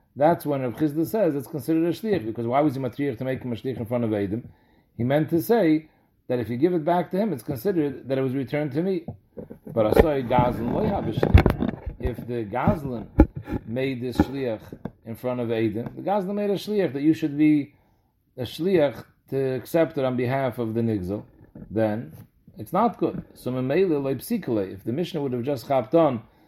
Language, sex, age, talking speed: English, male, 40-59, 200 wpm